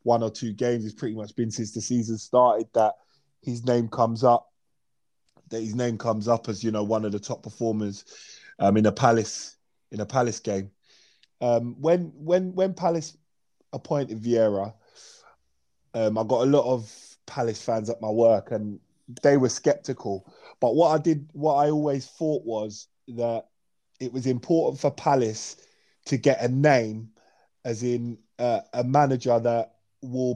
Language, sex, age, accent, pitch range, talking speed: English, male, 20-39, British, 110-135 Hz, 170 wpm